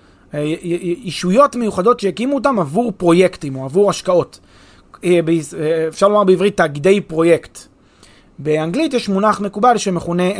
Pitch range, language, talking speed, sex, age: 155-205 Hz, Hebrew, 110 wpm, male, 30-49